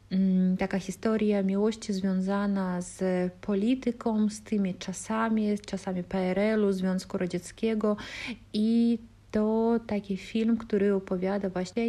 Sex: female